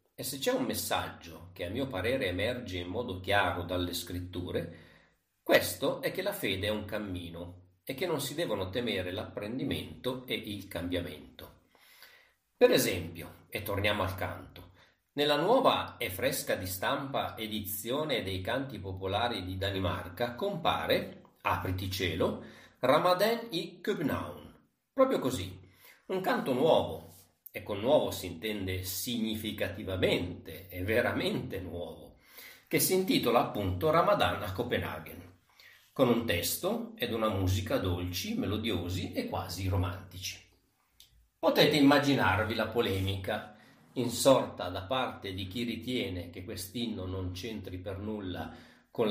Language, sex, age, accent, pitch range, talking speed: Italian, male, 40-59, native, 90-110 Hz, 130 wpm